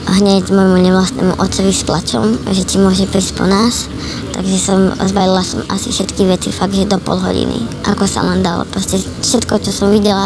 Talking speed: 185 wpm